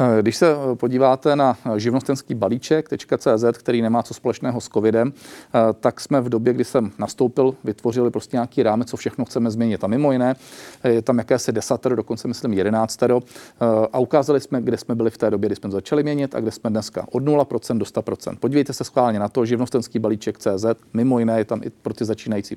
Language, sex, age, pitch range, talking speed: Czech, male, 40-59, 110-125 Hz, 195 wpm